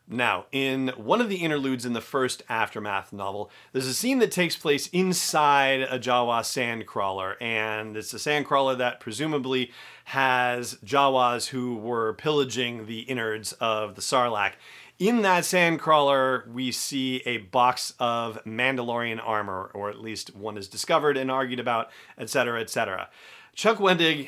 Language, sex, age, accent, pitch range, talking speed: English, male, 40-59, American, 115-135 Hz, 150 wpm